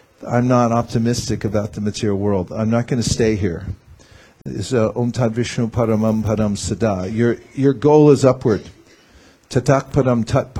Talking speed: 135 wpm